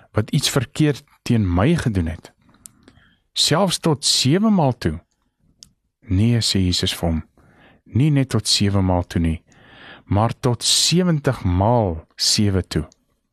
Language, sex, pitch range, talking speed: English, male, 100-140 Hz, 130 wpm